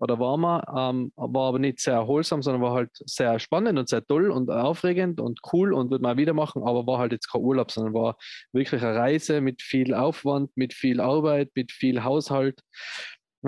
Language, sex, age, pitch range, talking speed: German, male, 20-39, 130-155 Hz, 210 wpm